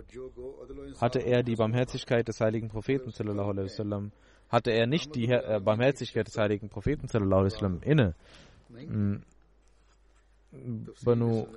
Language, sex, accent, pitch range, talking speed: German, male, German, 105-120 Hz, 90 wpm